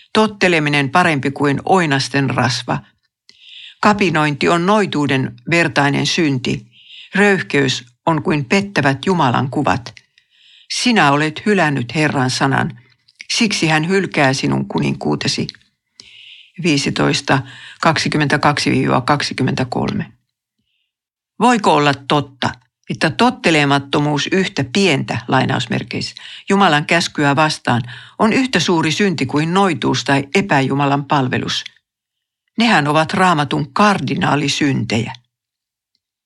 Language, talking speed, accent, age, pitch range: Finnish, 85 wpm, native, 60-79, 140-185 Hz